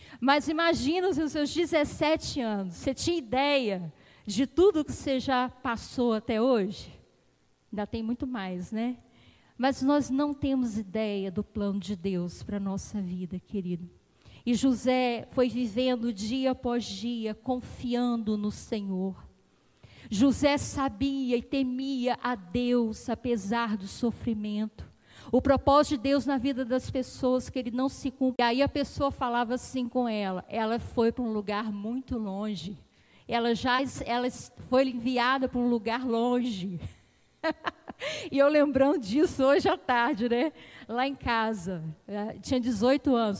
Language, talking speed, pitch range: Portuguese, 145 wpm, 220-270 Hz